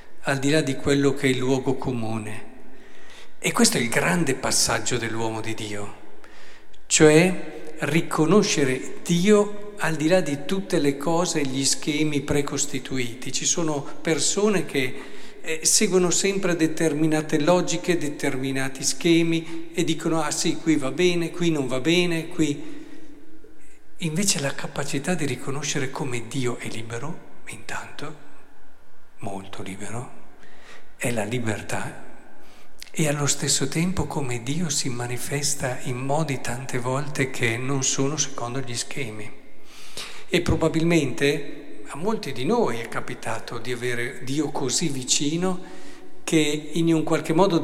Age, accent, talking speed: 50-69, native, 135 wpm